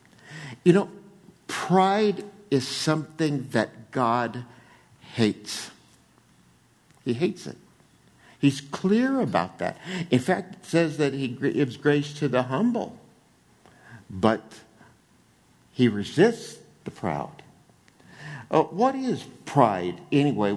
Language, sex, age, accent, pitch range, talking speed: English, male, 60-79, American, 120-165 Hz, 105 wpm